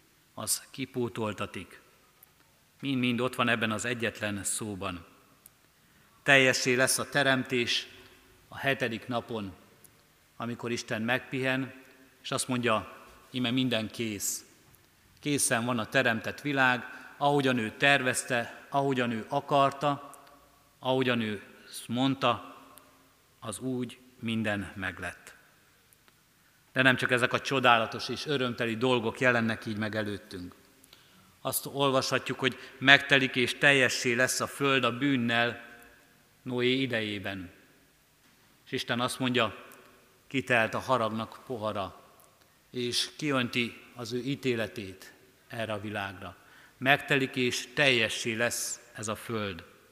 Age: 50-69